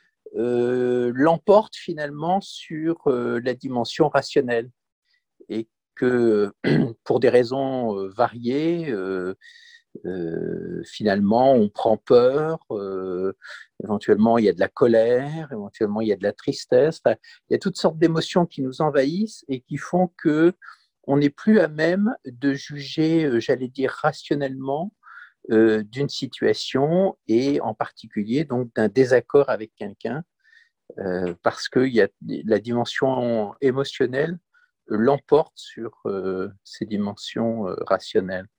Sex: male